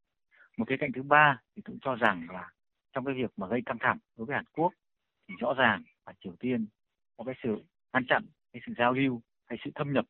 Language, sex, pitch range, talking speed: Vietnamese, male, 110-140 Hz, 225 wpm